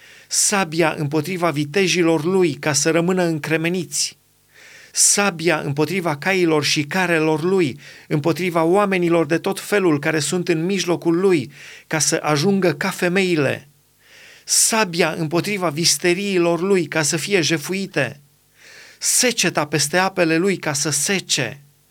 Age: 30-49